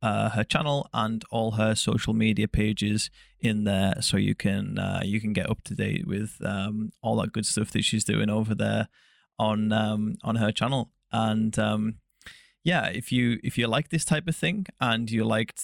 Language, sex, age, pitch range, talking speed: English, male, 20-39, 110-115 Hz, 200 wpm